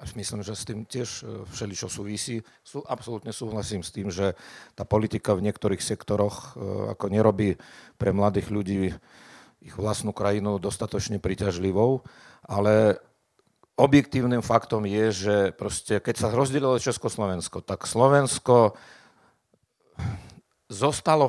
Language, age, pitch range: Slovak, 50-69, 105-125 Hz